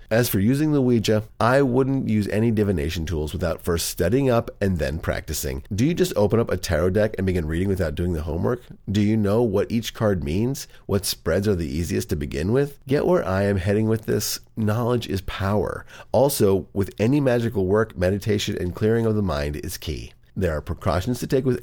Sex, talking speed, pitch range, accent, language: male, 215 wpm, 90-120 Hz, American, English